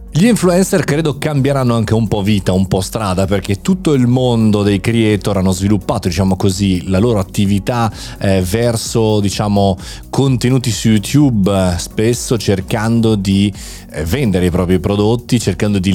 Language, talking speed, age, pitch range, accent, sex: Italian, 155 wpm, 30-49, 95-115 Hz, native, male